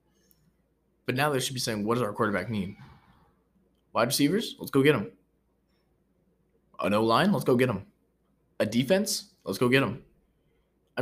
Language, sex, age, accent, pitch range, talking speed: English, male, 20-39, American, 105-130 Hz, 165 wpm